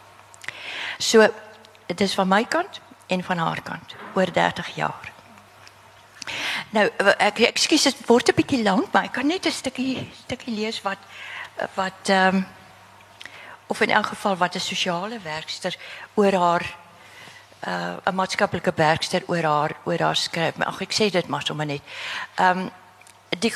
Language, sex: Dutch, female